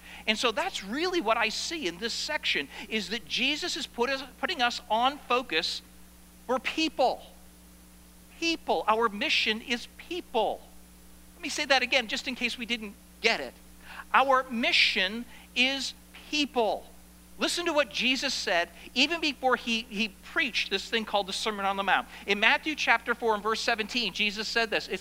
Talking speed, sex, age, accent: 170 wpm, male, 50-69, American